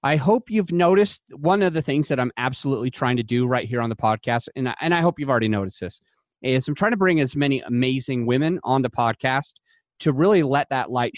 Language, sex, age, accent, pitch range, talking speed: English, male, 30-49, American, 130-165 Hz, 240 wpm